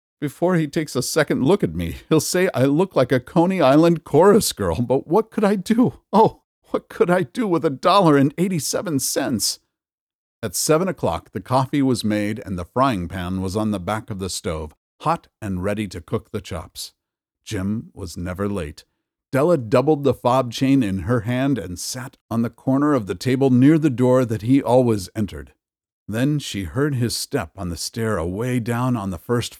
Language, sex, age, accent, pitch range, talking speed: English, male, 50-69, American, 95-135 Hz, 205 wpm